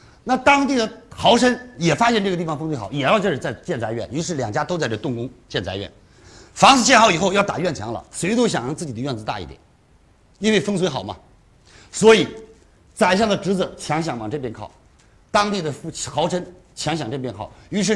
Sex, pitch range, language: male, 120-200 Hz, Chinese